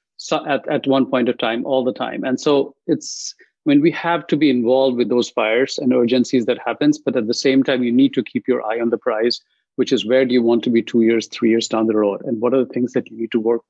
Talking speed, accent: 295 wpm, Indian